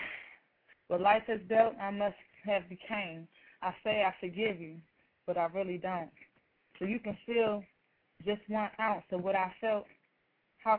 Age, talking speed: 20-39, 160 wpm